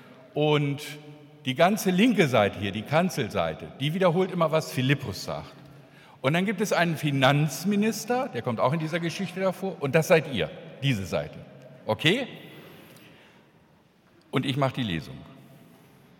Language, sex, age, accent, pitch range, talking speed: German, male, 50-69, German, 125-175 Hz, 145 wpm